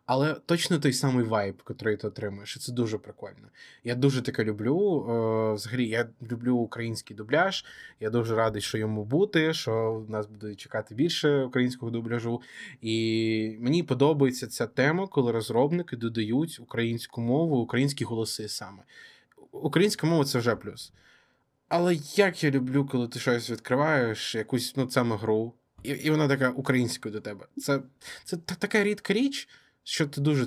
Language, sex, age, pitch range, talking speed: Ukrainian, male, 20-39, 110-140 Hz, 160 wpm